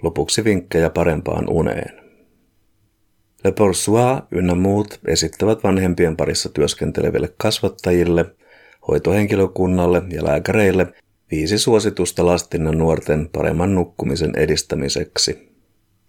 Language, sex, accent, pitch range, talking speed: Finnish, male, native, 85-105 Hz, 85 wpm